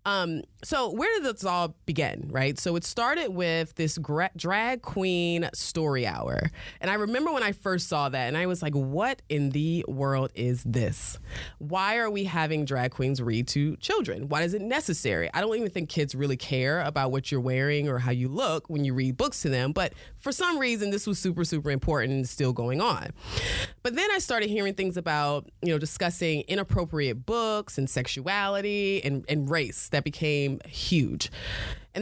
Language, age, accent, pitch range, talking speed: English, 20-39, American, 135-180 Hz, 195 wpm